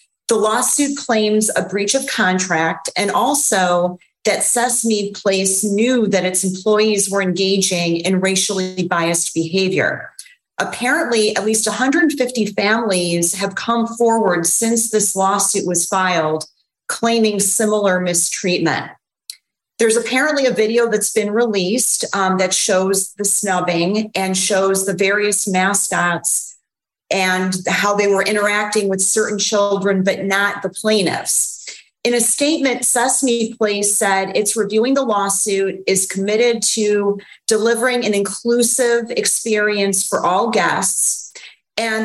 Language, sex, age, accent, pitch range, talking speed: English, female, 40-59, American, 190-225 Hz, 125 wpm